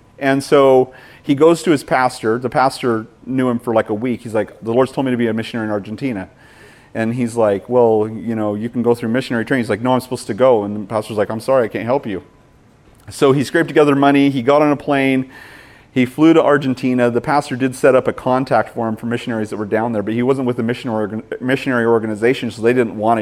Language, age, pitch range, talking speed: English, 30-49, 110-130 Hz, 250 wpm